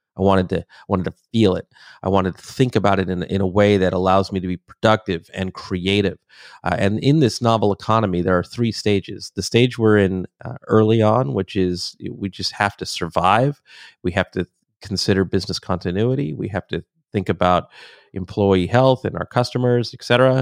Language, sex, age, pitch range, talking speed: French, male, 30-49, 95-115 Hz, 200 wpm